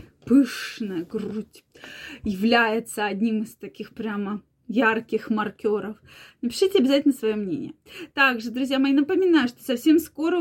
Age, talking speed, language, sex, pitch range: 20-39, 115 wpm, Russian, female, 215-260 Hz